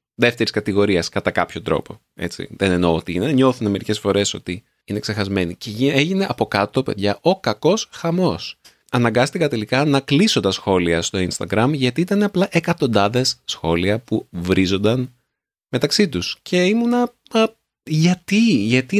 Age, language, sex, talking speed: 30-49, Greek, male, 140 wpm